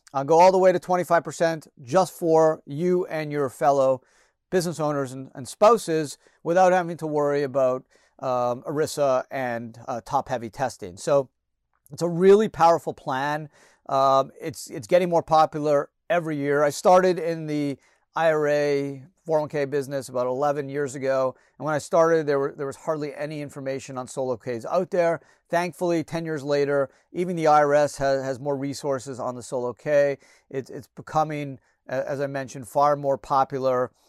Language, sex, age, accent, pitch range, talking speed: English, male, 40-59, American, 135-160 Hz, 165 wpm